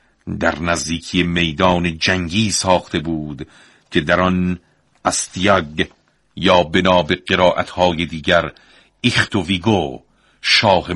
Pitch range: 85-110 Hz